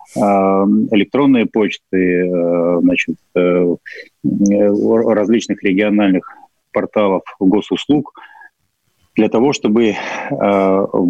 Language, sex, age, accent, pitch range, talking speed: Russian, male, 30-49, native, 95-105 Hz, 55 wpm